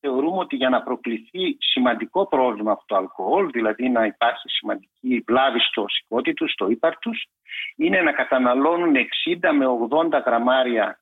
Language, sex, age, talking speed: Greek, male, 60-79, 150 wpm